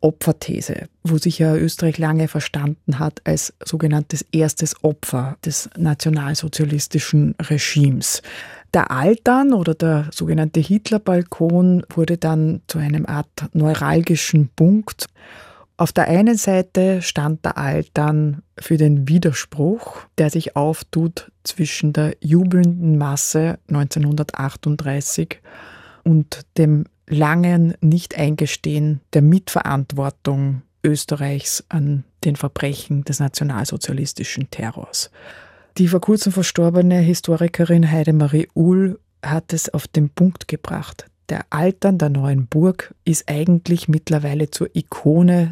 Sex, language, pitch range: female, German, 150-170 Hz